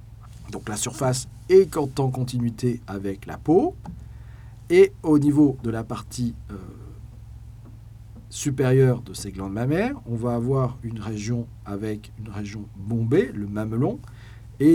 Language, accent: French, French